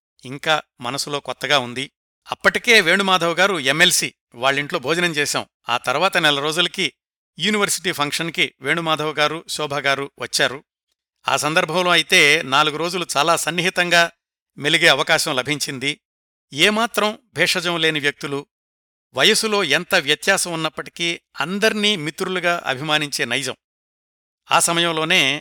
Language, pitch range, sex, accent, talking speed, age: Telugu, 135-175 Hz, male, native, 105 wpm, 60-79